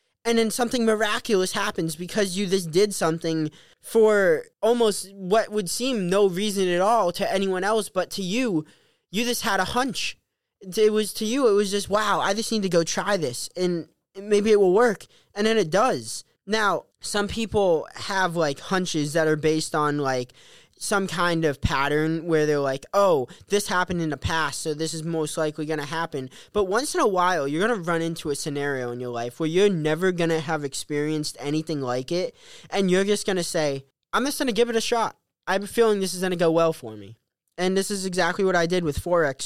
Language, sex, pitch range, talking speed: English, male, 150-205 Hz, 220 wpm